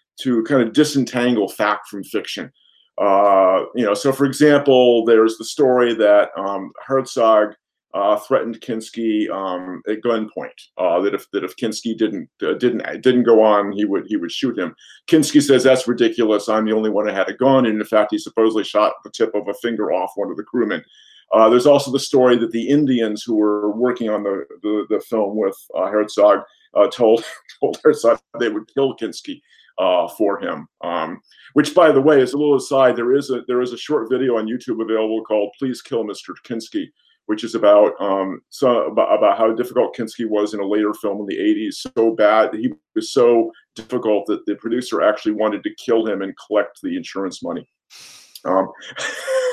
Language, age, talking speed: English, 50-69, 200 wpm